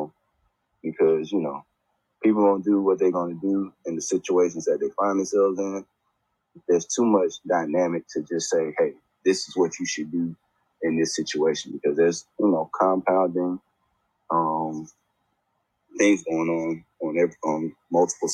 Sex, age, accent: male, 20-39, American